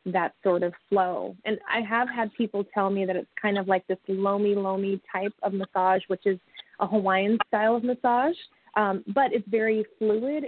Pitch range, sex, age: 185-210 Hz, female, 20-39